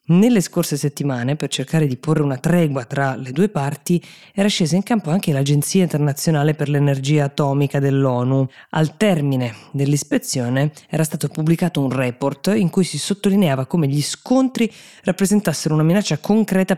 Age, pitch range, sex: 20-39, 135-170 Hz, female